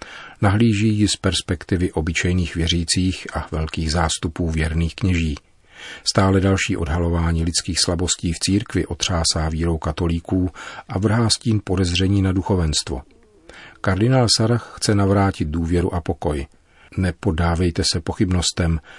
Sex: male